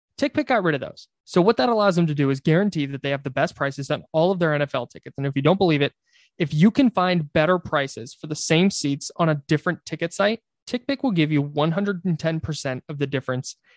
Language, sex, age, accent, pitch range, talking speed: English, male, 20-39, American, 145-180 Hz, 240 wpm